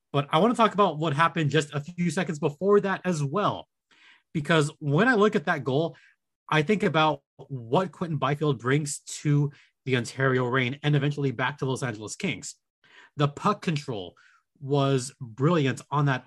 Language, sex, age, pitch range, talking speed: English, male, 30-49, 135-170 Hz, 175 wpm